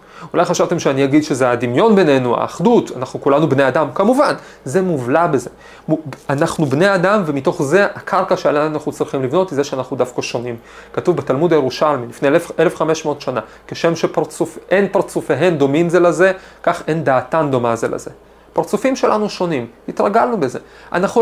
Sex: male